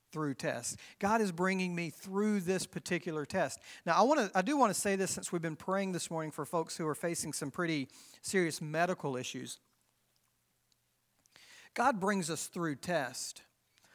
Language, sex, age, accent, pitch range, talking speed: English, male, 40-59, American, 155-195 Hz, 170 wpm